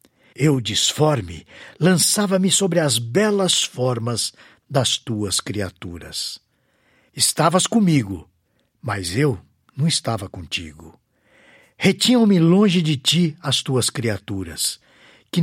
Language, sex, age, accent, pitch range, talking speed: Portuguese, male, 60-79, Brazilian, 100-160 Hz, 95 wpm